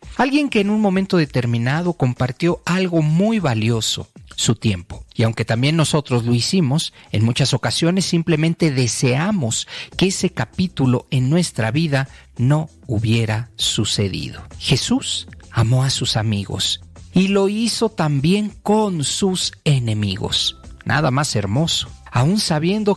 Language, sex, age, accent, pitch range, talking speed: Spanish, male, 40-59, Mexican, 110-160 Hz, 130 wpm